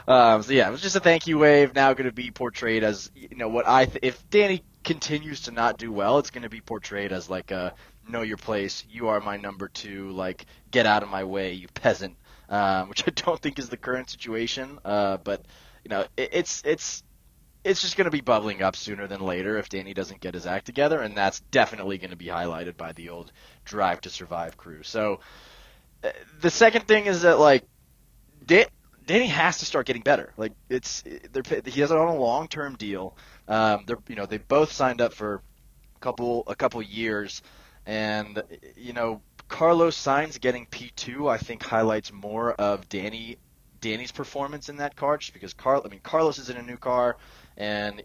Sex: male